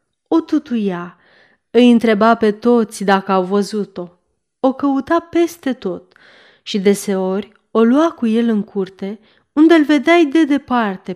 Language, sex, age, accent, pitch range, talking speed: Romanian, female, 30-49, native, 195-260 Hz, 140 wpm